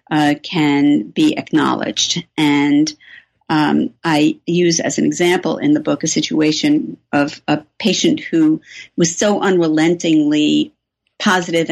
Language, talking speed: English, 125 wpm